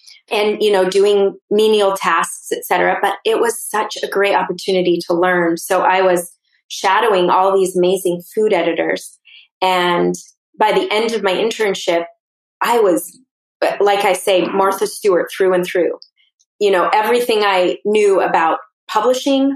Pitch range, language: 180-240 Hz, English